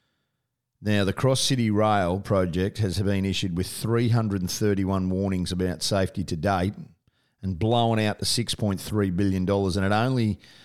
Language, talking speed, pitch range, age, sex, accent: English, 140 wpm, 95-110 Hz, 40-59, male, Australian